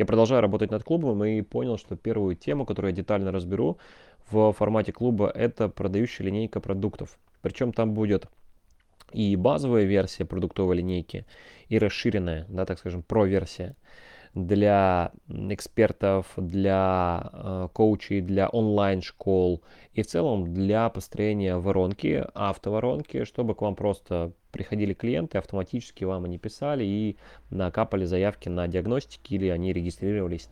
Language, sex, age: Russian, male, 20-39